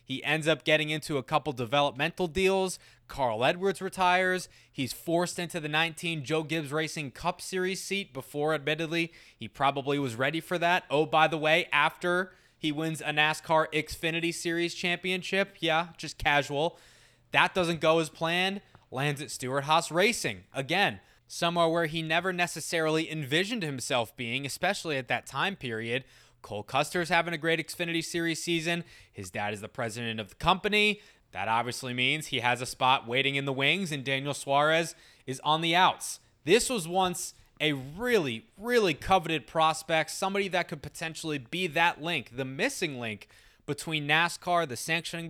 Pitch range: 140-175 Hz